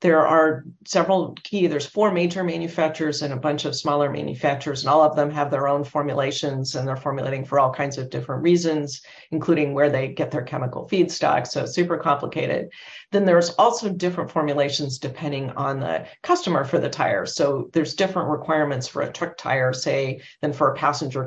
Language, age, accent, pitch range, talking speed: English, 40-59, American, 145-170 Hz, 190 wpm